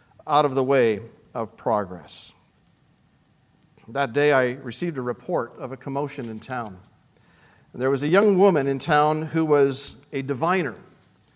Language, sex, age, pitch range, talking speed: English, male, 40-59, 125-160 Hz, 150 wpm